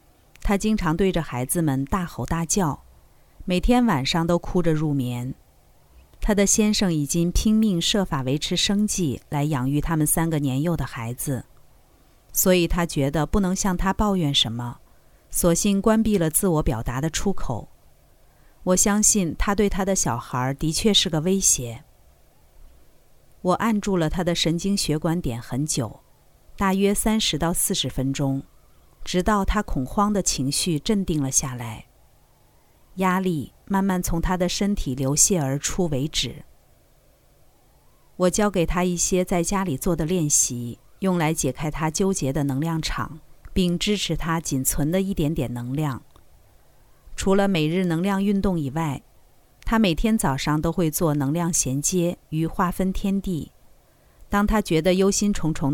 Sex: female